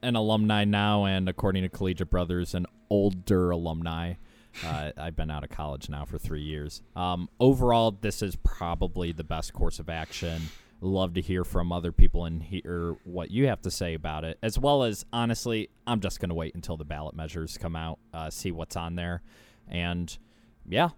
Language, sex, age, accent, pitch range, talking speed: English, male, 20-39, American, 85-110 Hz, 190 wpm